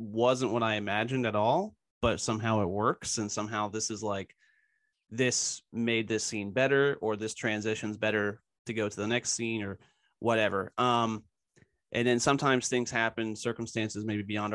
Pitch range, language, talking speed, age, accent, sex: 105-120 Hz, English, 170 wpm, 30-49, American, male